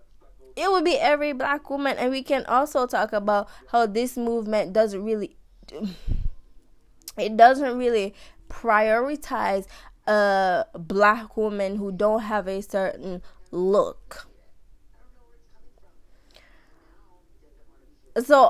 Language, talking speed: English, 95 wpm